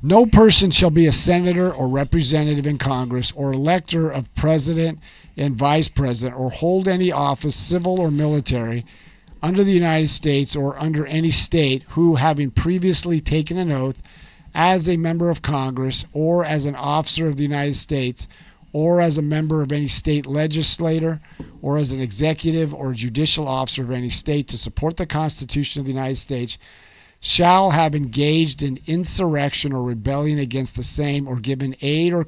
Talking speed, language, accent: 170 wpm, English, American